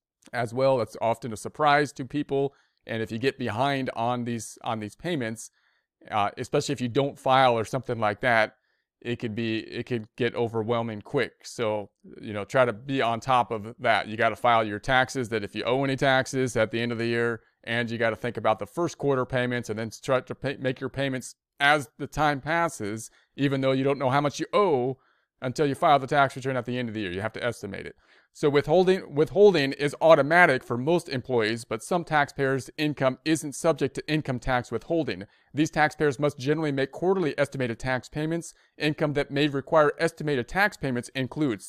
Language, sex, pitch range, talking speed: English, male, 120-145 Hz, 210 wpm